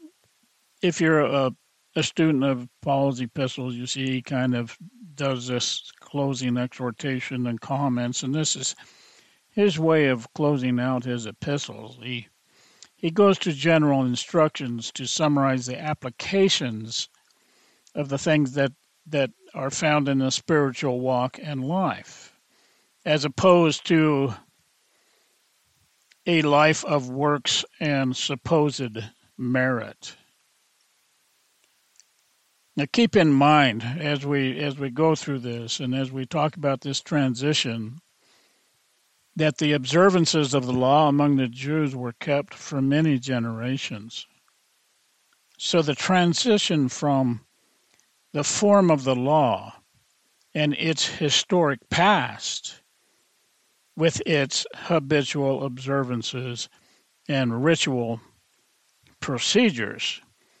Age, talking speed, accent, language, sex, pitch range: 50-69, 115 wpm, American, English, male, 125-155 Hz